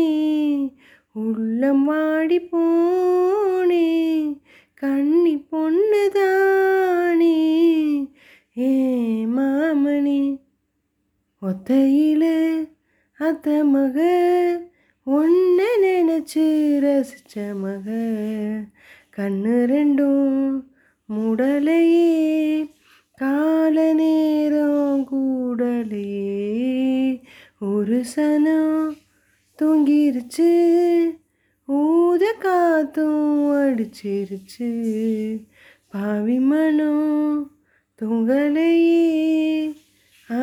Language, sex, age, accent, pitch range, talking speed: Tamil, female, 20-39, native, 245-315 Hz, 40 wpm